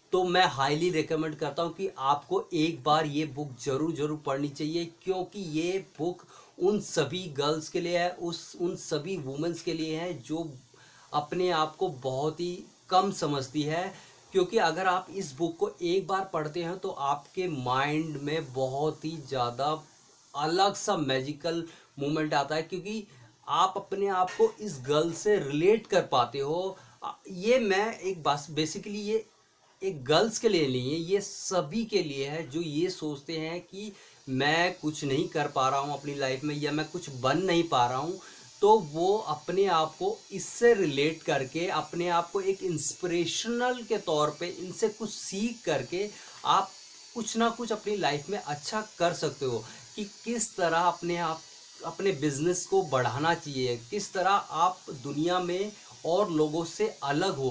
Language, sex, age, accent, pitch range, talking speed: Hindi, male, 30-49, native, 150-195 Hz, 175 wpm